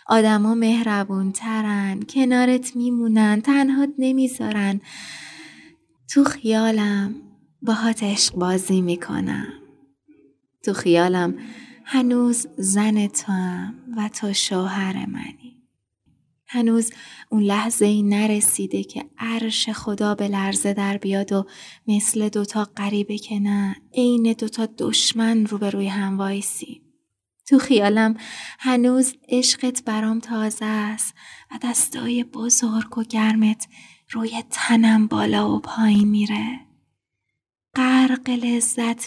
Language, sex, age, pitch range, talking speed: Persian, female, 20-39, 200-235 Hz, 105 wpm